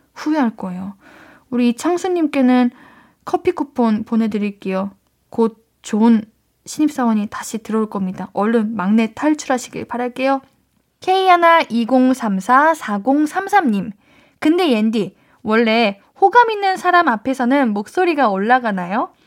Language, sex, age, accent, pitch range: Korean, female, 10-29, native, 220-325 Hz